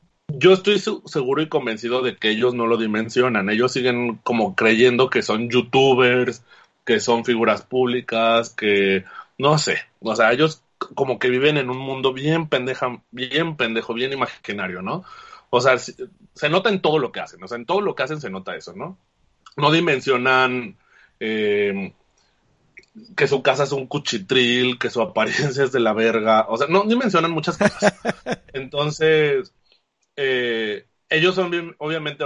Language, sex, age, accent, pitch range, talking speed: Spanish, male, 30-49, Mexican, 110-160 Hz, 160 wpm